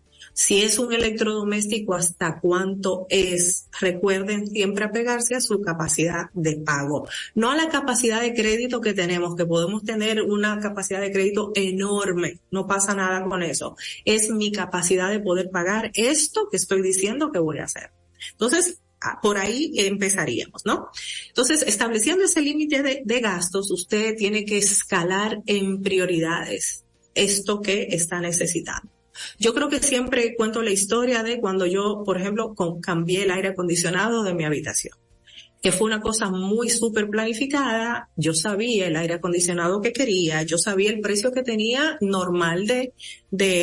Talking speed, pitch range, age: 155 wpm, 180-220 Hz, 30-49